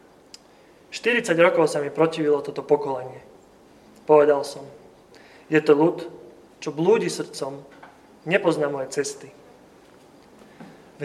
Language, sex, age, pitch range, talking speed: Slovak, male, 30-49, 150-180 Hz, 105 wpm